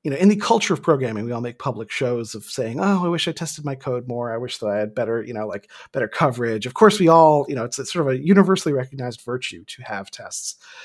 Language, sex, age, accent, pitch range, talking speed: English, male, 30-49, American, 125-180 Hz, 275 wpm